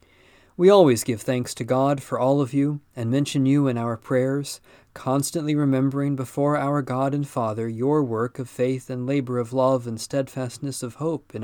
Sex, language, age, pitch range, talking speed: male, English, 40-59, 115-145 Hz, 190 wpm